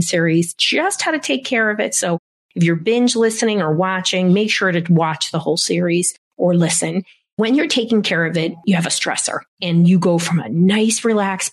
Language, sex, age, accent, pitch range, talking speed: English, female, 40-59, American, 170-225 Hz, 215 wpm